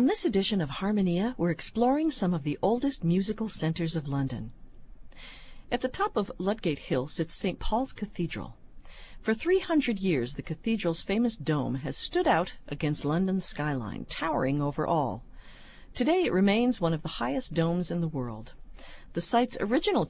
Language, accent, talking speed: English, American, 165 wpm